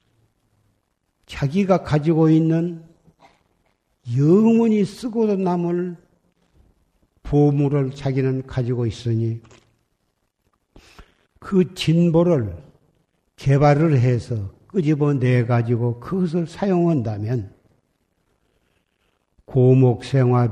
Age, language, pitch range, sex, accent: 50-69, Korean, 125-160 Hz, male, native